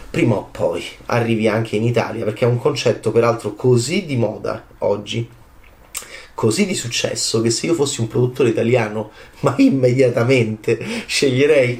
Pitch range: 110-145 Hz